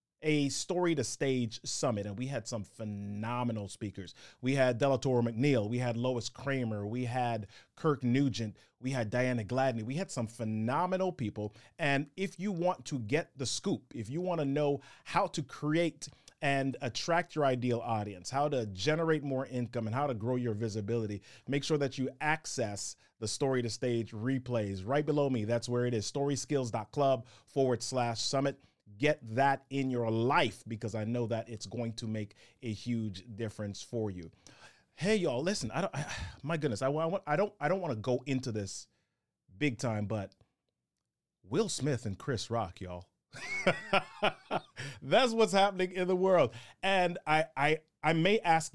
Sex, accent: male, American